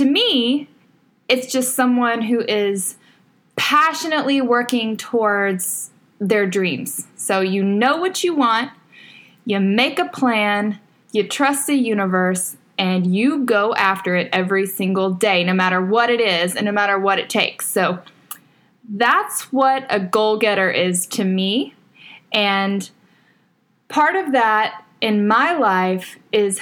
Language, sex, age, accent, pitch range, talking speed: English, female, 10-29, American, 195-250 Hz, 140 wpm